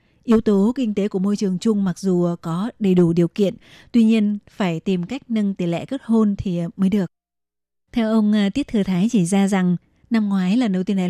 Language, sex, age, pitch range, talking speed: Vietnamese, female, 20-39, 185-215 Hz, 225 wpm